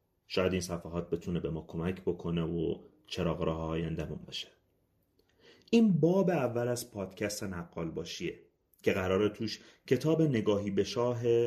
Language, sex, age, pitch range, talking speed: Persian, male, 30-49, 90-130 Hz, 145 wpm